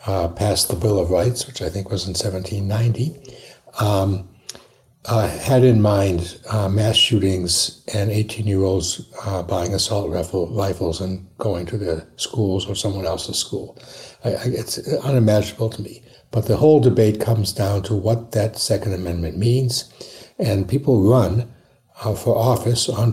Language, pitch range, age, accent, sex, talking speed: English, 100-125 Hz, 60-79, American, male, 150 wpm